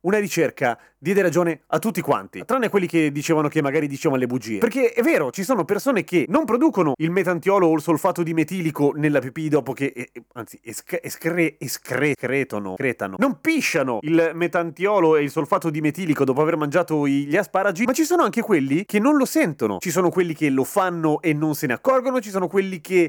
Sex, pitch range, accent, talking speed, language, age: male, 145-205 Hz, native, 210 wpm, Italian, 30-49